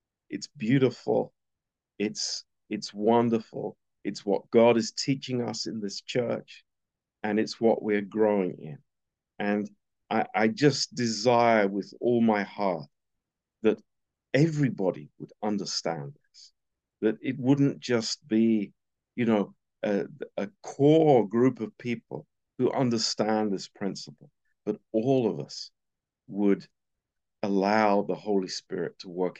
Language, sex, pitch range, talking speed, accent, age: Romanian, male, 95-115 Hz, 125 wpm, British, 50-69